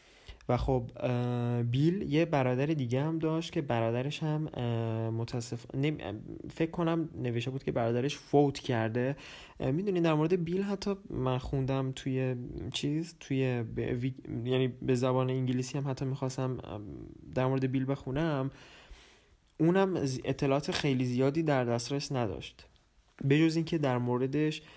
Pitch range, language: 120-150 Hz, Persian